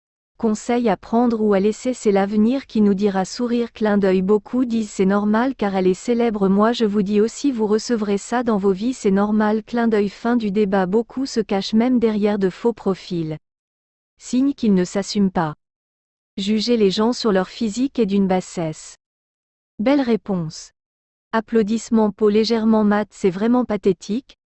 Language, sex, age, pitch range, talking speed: French, female, 40-59, 200-235 Hz, 175 wpm